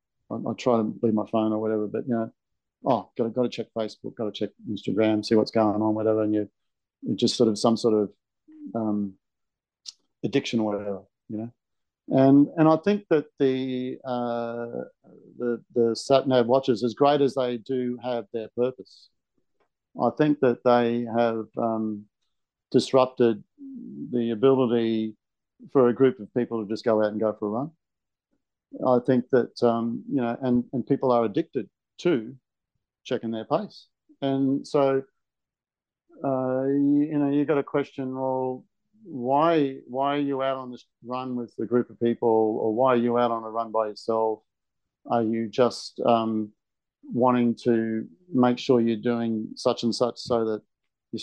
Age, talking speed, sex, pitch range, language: 50-69, 170 wpm, male, 115-130 Hz, English